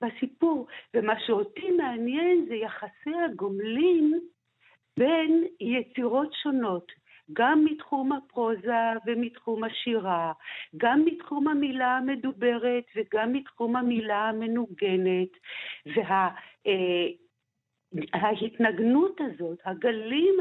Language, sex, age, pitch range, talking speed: Hebrew, female, 60-79, 205-290 Hz, 75 wpm